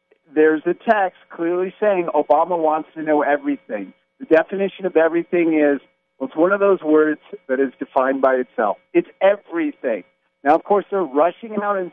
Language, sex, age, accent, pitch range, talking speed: English, male, 50-69, American, 135-185 Hz, 175 wpm